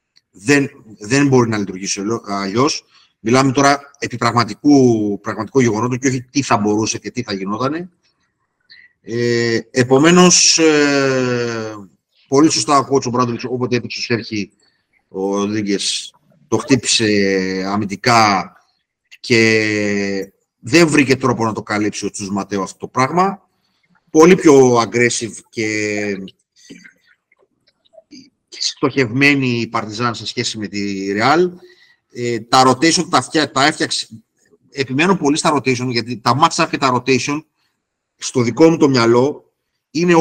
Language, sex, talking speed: Greek, male, 125 wpm